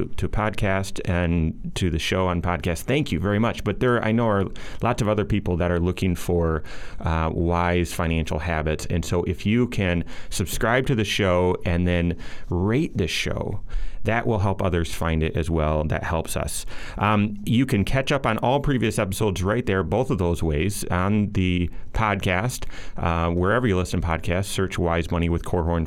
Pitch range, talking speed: 90-115 Hz, 195 wpm